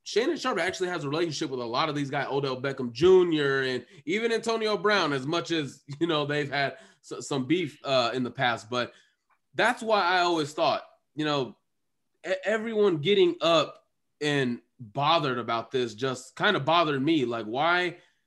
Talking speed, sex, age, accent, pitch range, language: 175 wpm, male, 20-39, American, 145-230 Hz, English